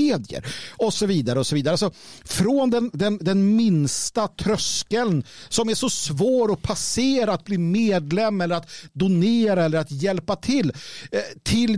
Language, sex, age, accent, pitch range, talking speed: Swedish, male, 50-69, native, 150-210 Hz, 155 wpm